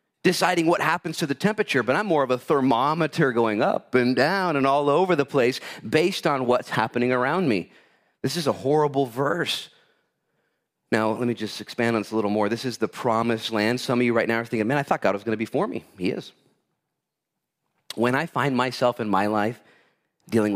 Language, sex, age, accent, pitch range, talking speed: English, male, 30-49, American, 110-140 Hz, 215 wpm